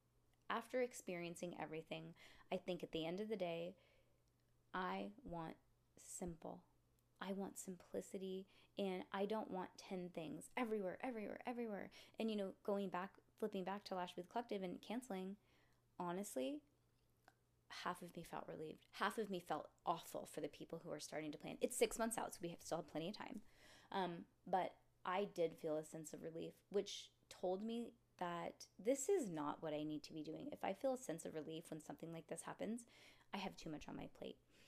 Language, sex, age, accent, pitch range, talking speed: English, female, 20-39, American, 170-215 Hz, 190 wpm